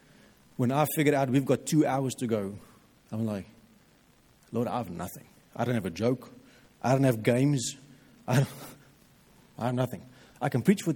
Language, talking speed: English, 180 wpm